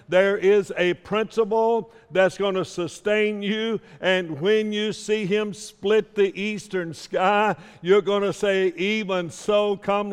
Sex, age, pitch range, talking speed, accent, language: male, 60-79, 145-195 Hz, 150 wpm, American, English